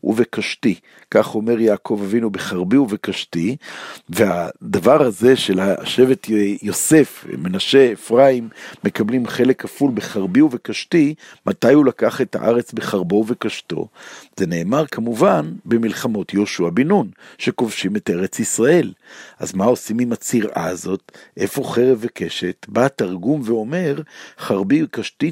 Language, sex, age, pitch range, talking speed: Hebrew, male, 50-69, 105-125 Hz, 120 wpm